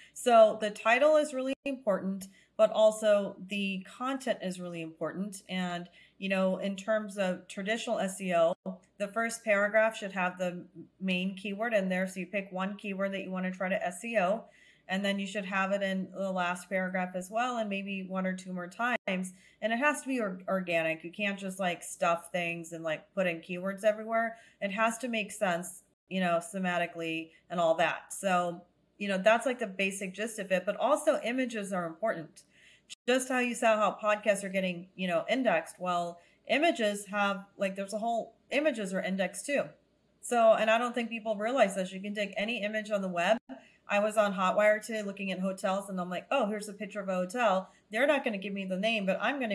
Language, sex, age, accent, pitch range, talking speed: English, female, 30-49, American, 185-220 Hz, 210 wpm